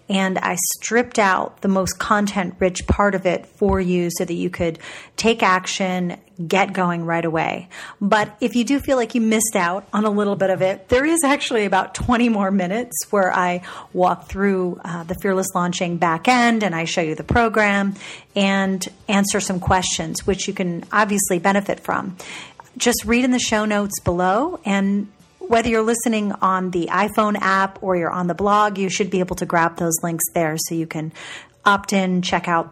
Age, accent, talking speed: 40-59, American, 195 wpm